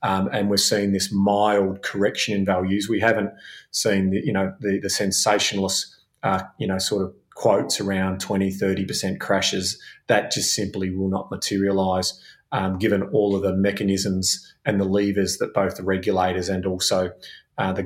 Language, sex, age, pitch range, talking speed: English, male, 30-49, 95-110 Hz, 170 wpm